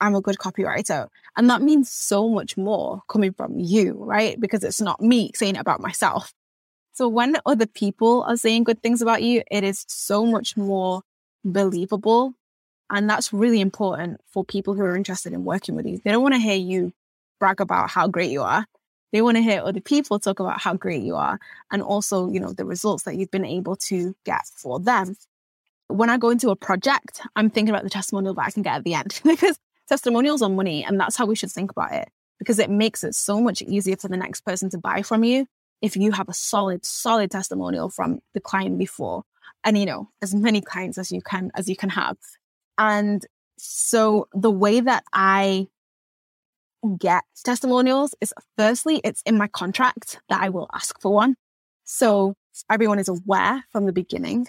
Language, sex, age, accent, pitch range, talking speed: English, female, 10-29, British, 195-230 Hz, 205 wpm